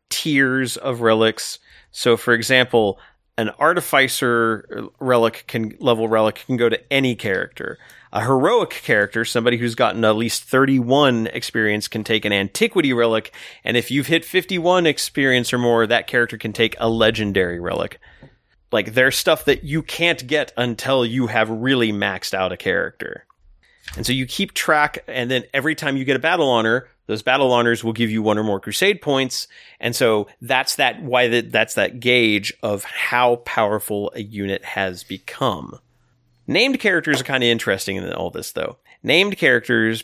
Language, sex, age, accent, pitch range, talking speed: English, male, 30-49, American, 110-130 Hz, 170 wpm